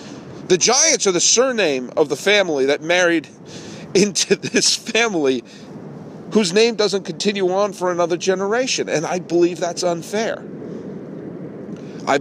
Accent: American